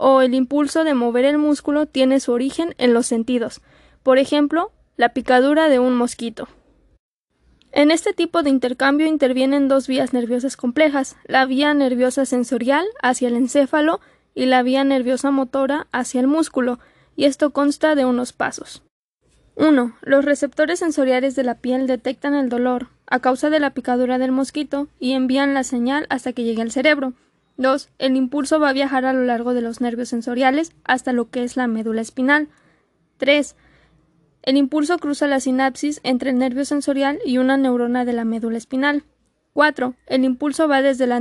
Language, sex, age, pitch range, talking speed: Spanish, female, 20-39, 250-285 Hz, 175 wpm